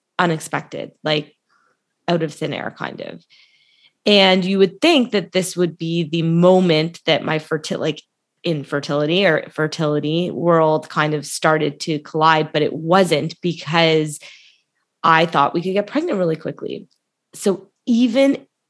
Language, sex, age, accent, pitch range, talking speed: English, female, 20-39, American, 155-180 Hz, 140 wpm